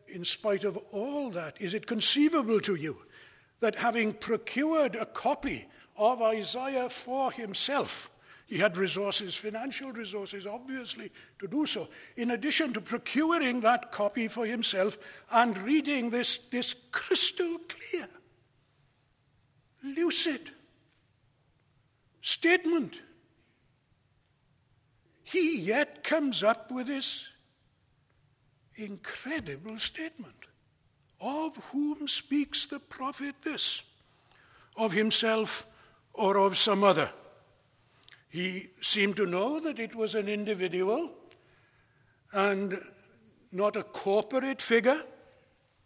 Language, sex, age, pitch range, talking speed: English, male, 60-79, 185-270 Hz, 100 wpm